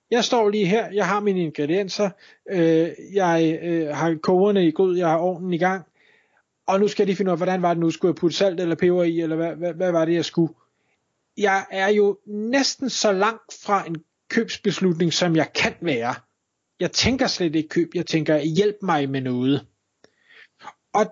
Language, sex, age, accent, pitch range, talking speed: Danish, male, 30-49, native, 160-205 Hz, 205 wpm